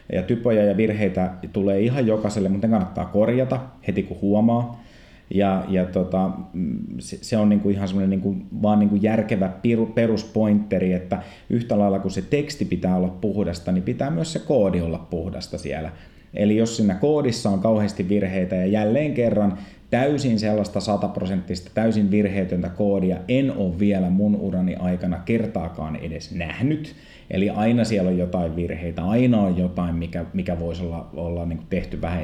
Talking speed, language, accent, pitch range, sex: 160 wpm, Finnish, native, 90-105 Hz, male